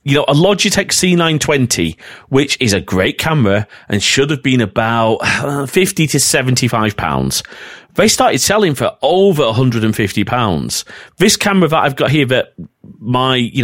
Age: 40-59